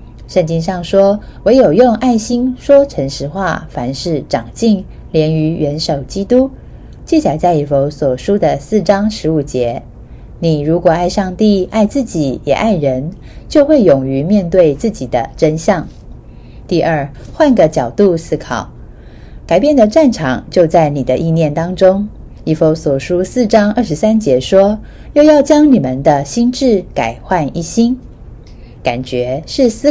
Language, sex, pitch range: Chinese, female, 145-225 Hz